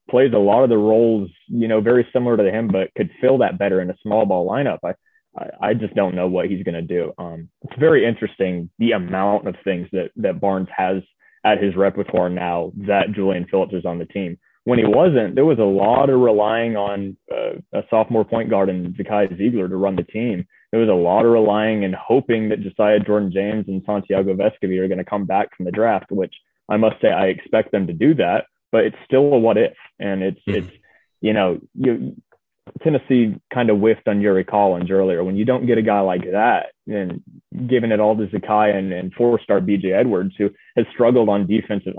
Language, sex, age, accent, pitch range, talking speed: English, male, 20-39, American, 95-115 Hz, 220 wpm